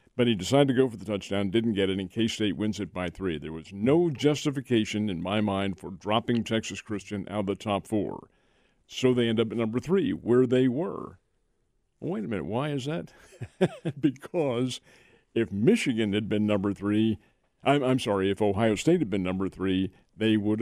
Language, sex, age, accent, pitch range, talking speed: English, male, 50-69, American, 100-125 Hz, 200 wpm